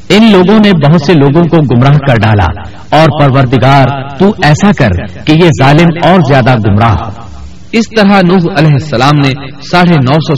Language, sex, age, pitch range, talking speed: Urdu, male, 50-69, 125-165 Hz, 175 wpm